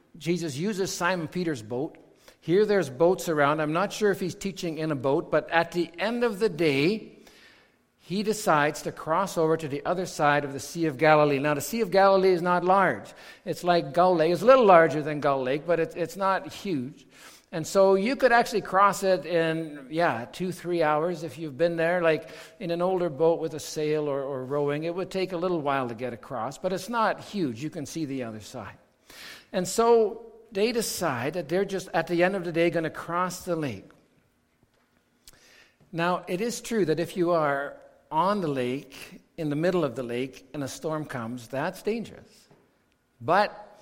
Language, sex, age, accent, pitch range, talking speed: English, male, 60-79, American, 145-185 Hz, 205 wpm